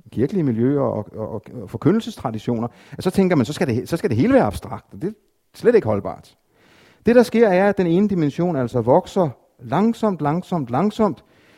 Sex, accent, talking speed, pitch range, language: male, native, 200 wpm, 135-200 Hz, Danish